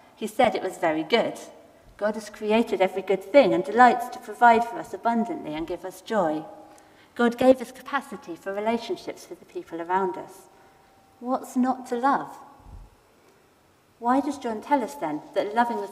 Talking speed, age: 175 wpm, 40-59